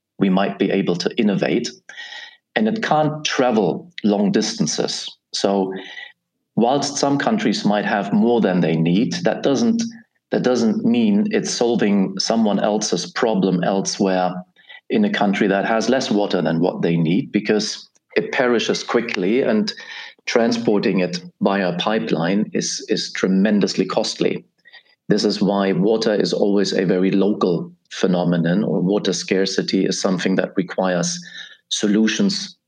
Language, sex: English, male